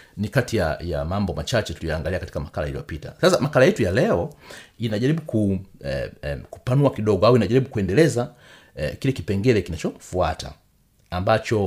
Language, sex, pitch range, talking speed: Swahili, male, 95-130 Hz, 150 wpm